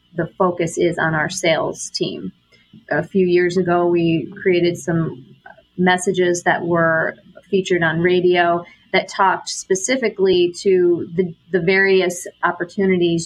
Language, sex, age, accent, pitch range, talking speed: English, female, 30-49, American, 170-195 Hz, 125 wpm